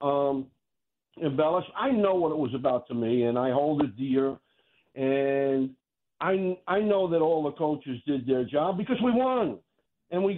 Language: English